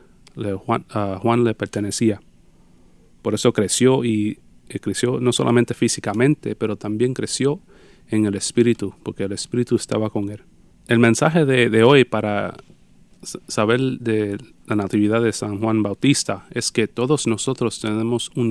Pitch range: 105-120 Hz